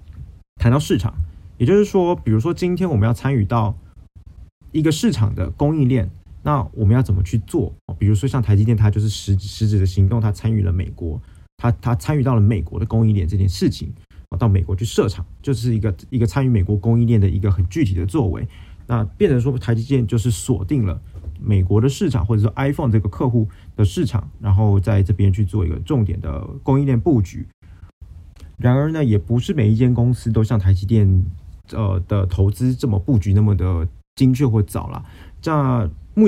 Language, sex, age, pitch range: Chinese, male, 20-39, 95-120 Hz